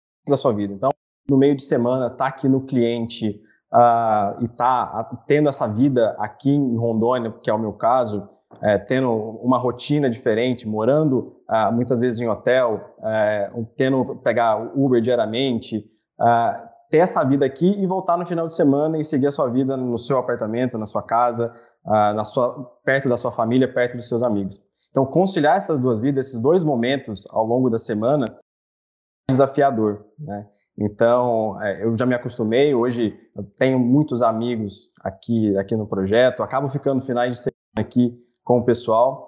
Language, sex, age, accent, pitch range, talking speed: Portuguese, male, 20-39, Brazilian, 115-135 Hz, 175 wpm